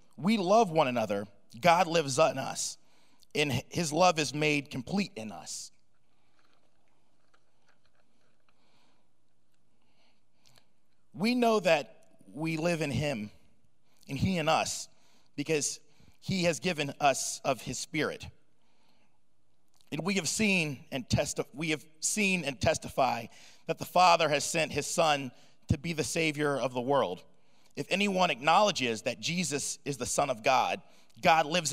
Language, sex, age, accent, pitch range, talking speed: English, male, 30-49, American, 140-180 Hz, 135 wpm